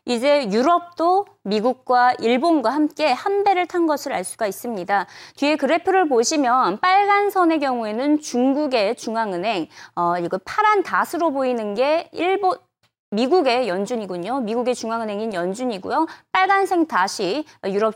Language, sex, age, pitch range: Korean, female, 20-39, 225-335 Hz